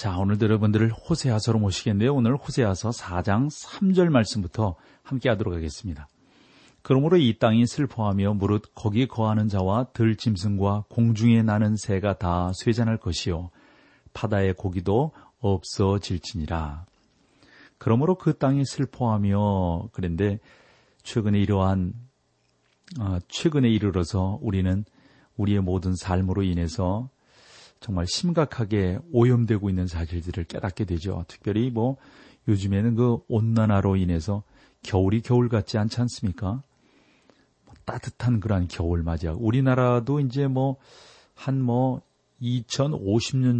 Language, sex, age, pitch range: Korean, male, 40-59, 95-120 Hz